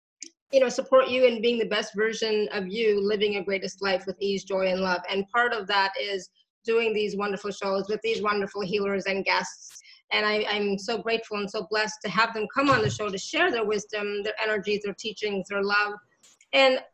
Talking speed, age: 215 wpm, 30-49